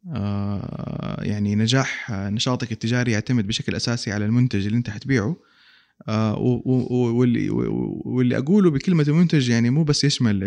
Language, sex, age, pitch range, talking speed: Arabic, male, 20-39, 105-130 Hz, 115 wpm